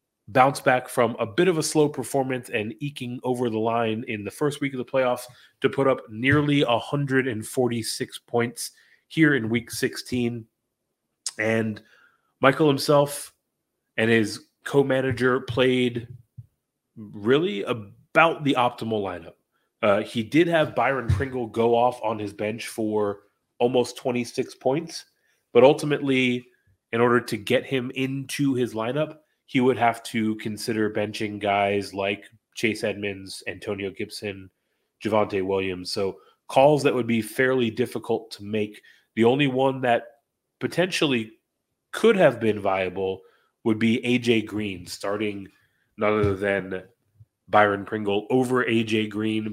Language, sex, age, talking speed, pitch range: English, male, 30-49, 135 wpm, 105-130 Hz